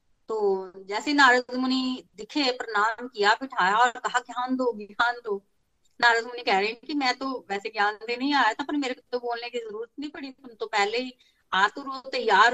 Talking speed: 205 wpm